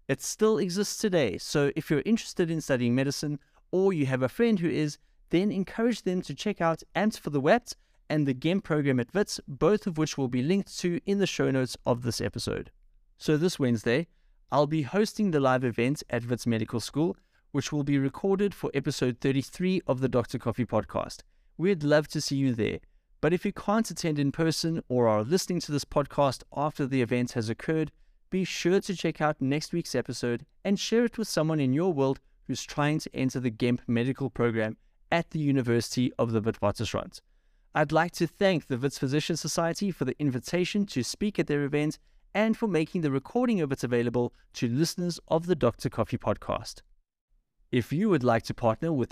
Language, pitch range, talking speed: English, 125-175 Hz, 200 wpm